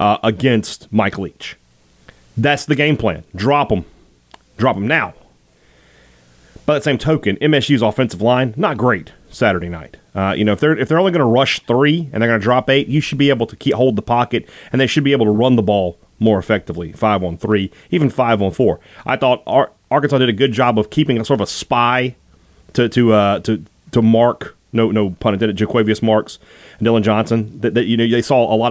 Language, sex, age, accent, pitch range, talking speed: English, male, 30-49, American, 105-140 Hz, 220 wpm